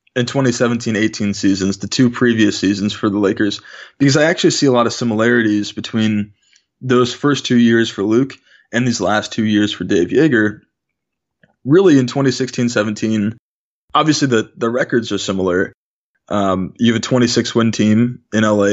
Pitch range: 110-130 Hz